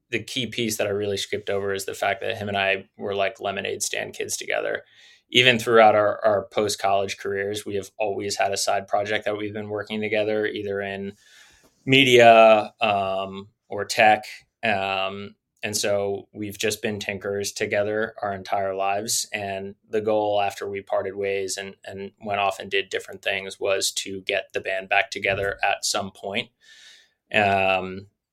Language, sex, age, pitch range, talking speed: English, male, 20-39, 100-110 Hz, 175 wpm